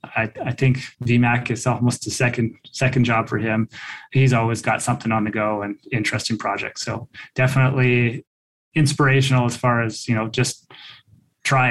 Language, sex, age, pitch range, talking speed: English, male, 20-39, 110-130 Hz, 160 wpm